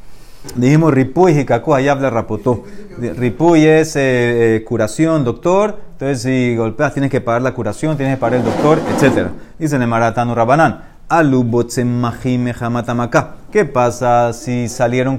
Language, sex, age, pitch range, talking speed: Spanish, male, 30-49, 120-155 Hz, 145 wpm